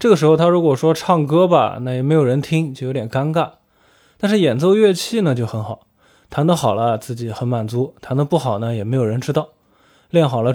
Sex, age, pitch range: male, 20-39, 120-165 Hz